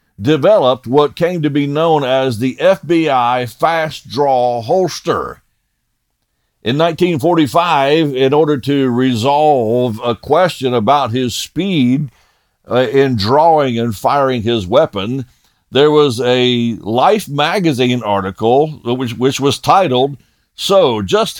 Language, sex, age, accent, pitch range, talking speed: English, male, 50-69, American, 120-160 Hz, 120 wpm